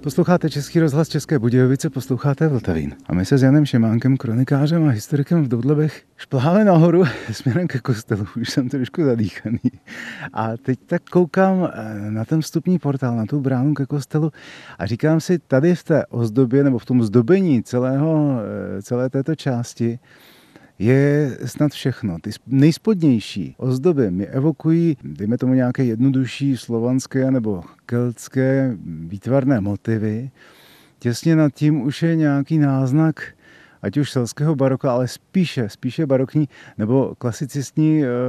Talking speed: 140 wpm